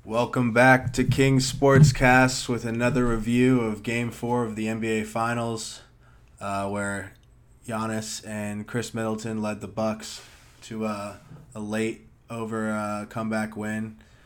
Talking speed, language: 135 wpm, English